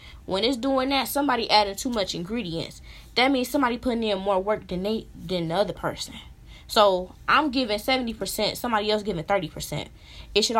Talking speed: 180 wpm